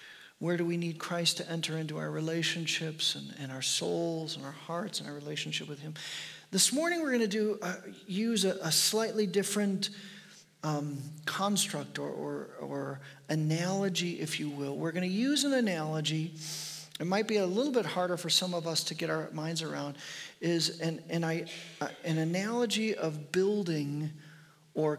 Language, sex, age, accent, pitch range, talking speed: English, male, 40-59, American, 160-200 Hz, 180 wpm